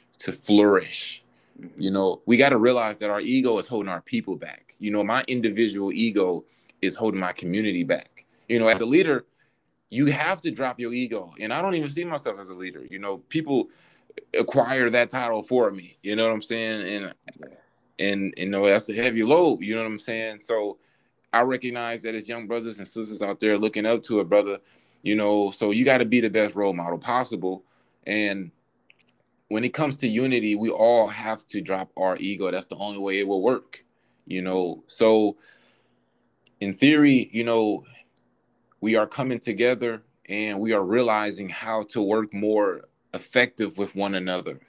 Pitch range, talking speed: 95-115 Hz, 190 wpm